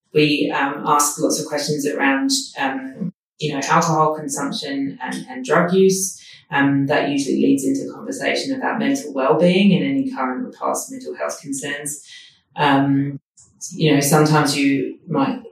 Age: 30-49